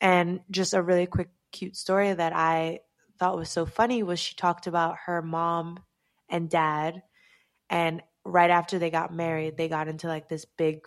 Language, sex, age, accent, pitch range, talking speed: English, female, 20-39, American, 160-185 Hz, 180 wpm